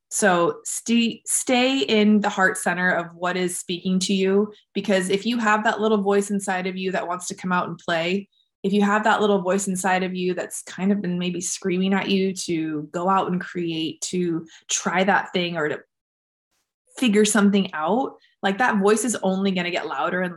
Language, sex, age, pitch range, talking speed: English, female, 20-39, 175-200 Hz, 210 wpm